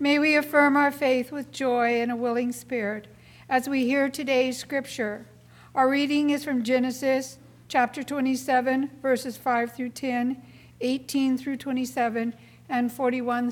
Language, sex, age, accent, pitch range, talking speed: English, female, 60-79, American, 245-275 Hz, 140 wpm